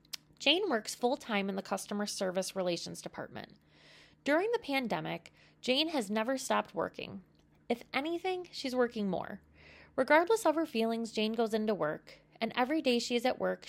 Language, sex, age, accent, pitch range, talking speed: English, female, 20-39, American, 195-280 Hz, 160 wpm